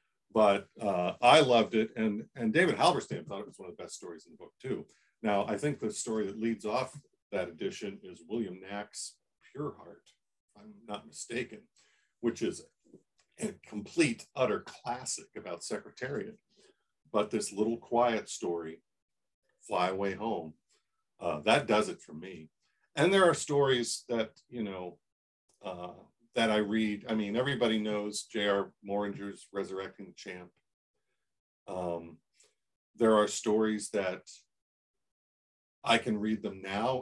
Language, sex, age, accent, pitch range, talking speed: English, male, 50-69, American, 95-115 Hz, 150 wpm